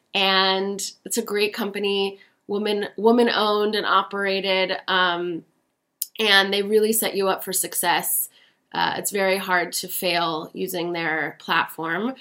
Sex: female